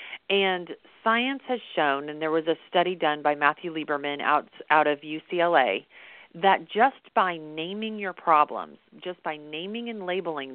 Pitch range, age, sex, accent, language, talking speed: 155-205 Hz, 40-59, female, American, English, 160 wpm